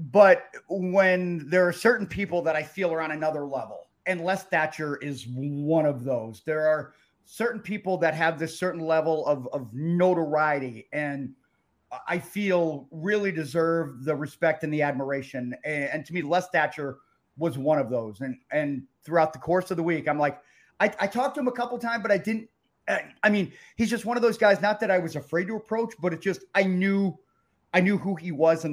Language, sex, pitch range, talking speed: English, male, 145-180 Hz, 210 wpm